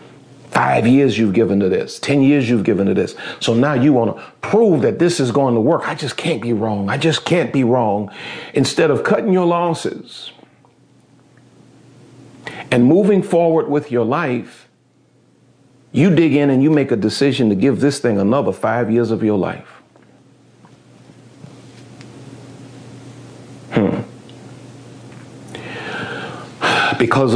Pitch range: 125-150 Hz